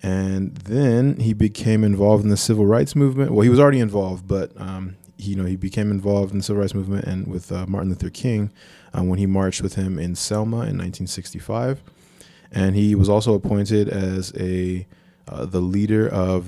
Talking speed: 200 wpm